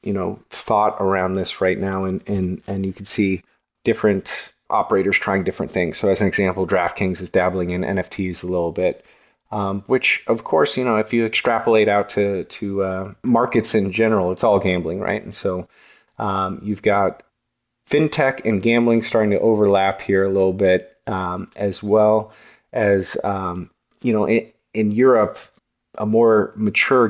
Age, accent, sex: 30-49, American, male